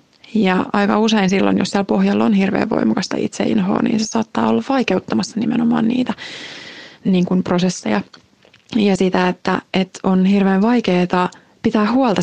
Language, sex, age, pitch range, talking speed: Finnish, female, 20-39, 190-230 Hz, 145 wpm